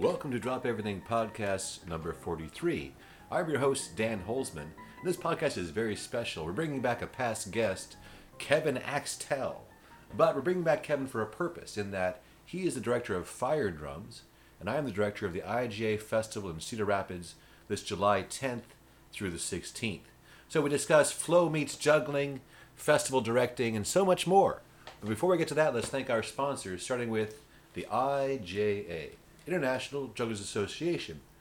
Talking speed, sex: 170 wpm, male